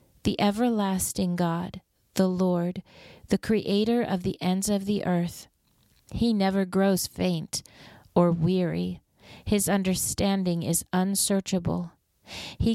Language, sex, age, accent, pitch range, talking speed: English, female, 30-49, American, 175-195 Hz, 115 wpm